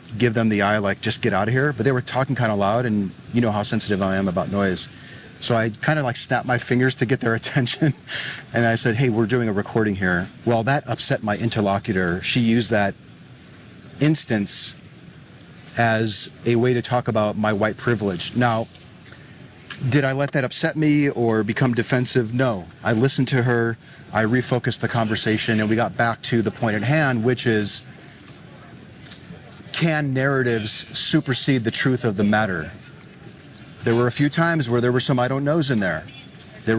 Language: English